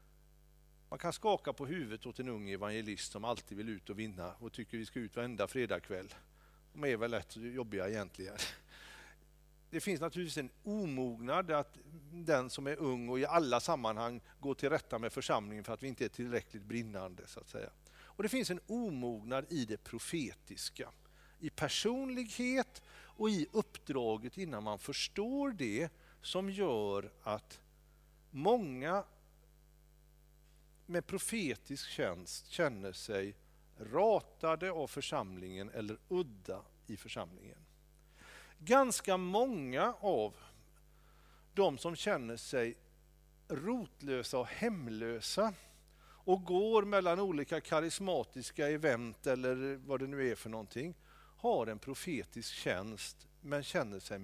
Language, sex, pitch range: Swedish, male, 115-175 Hz